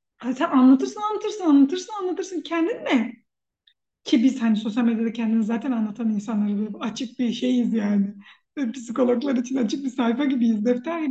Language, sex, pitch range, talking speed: Turkish, female, 235-320 Hz, 150 wpm